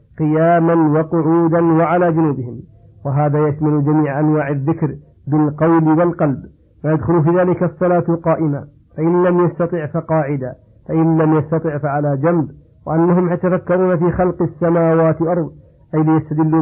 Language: Arabic